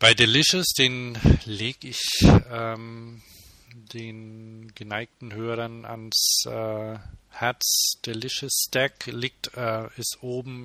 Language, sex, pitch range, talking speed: German, male, 105-120 Hz, 100 wpm